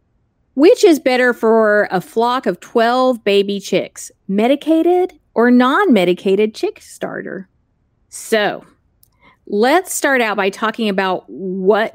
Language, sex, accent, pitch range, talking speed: English, female, American, 190-235 Hz, 115 wpm